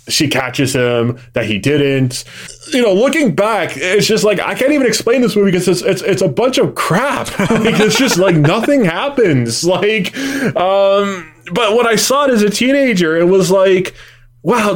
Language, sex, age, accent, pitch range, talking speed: English, male, 20-39, American, 120-185 Hz, 190 wpm